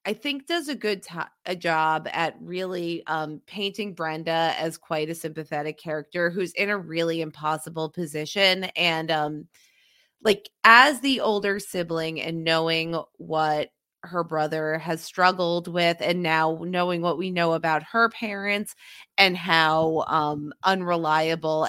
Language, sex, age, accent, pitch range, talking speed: English, female, 20-39, American, 155-185 Hz, 140 wpm